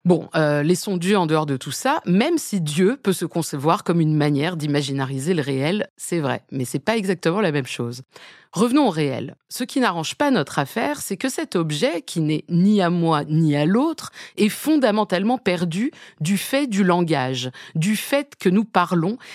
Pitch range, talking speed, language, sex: 150-225 Hz, 200 wpm, French, female